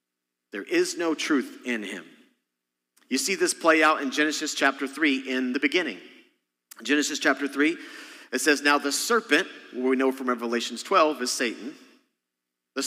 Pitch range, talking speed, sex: 115-190 Hz, 165 wpm, male